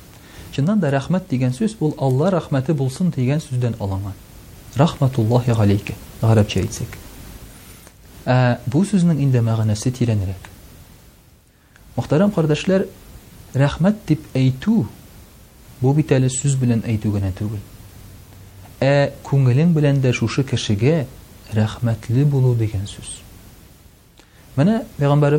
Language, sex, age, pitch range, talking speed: Russian, male, 40-59, 105-145 Hz, 50 wpm